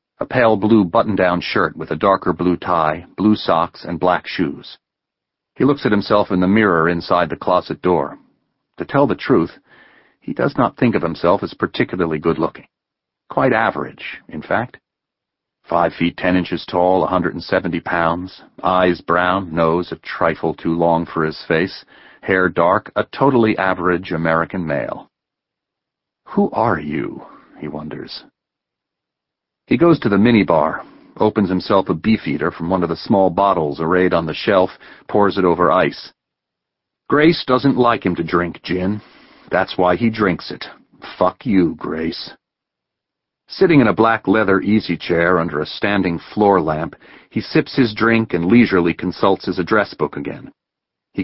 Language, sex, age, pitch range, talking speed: English, male, 40-59, 85-105 Hz, 160 wpm